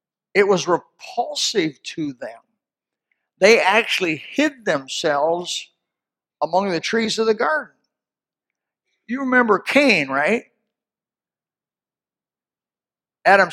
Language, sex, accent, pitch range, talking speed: English, male, American, 165-240 Hz, 90 wpm